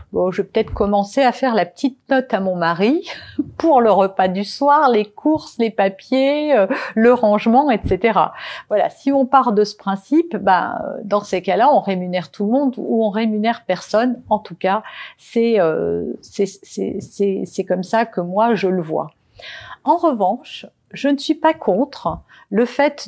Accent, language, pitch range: French, French, 185-250 Hz